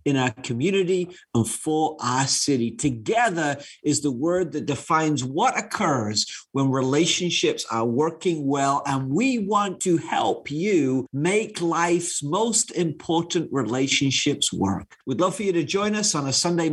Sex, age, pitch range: male, 50-69, 135-195 Hz